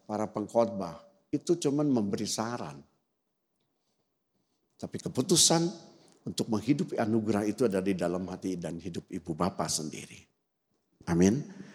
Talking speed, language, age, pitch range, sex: 110 wpm, Indonesian, 50-69, 100-135 Hz, male